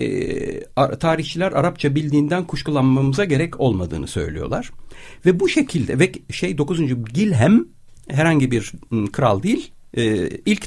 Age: 60-79